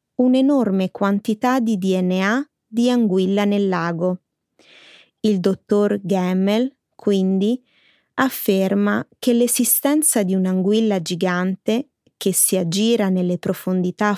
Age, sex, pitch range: 20-39, female, 190-235 Hz